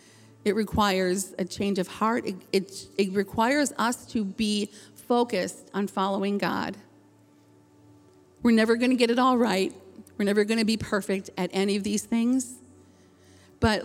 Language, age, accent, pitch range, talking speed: English, 40-59, American, 180-215 Hz, 160 wpm